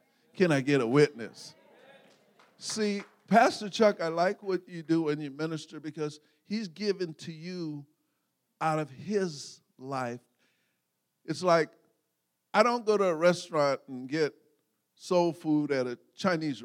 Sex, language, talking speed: male, English, 145 wpm